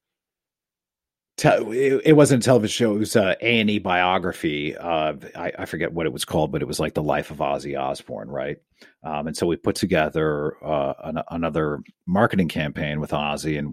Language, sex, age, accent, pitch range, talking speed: English, male, 40-59, American, 80-120 Hz, 175 wpm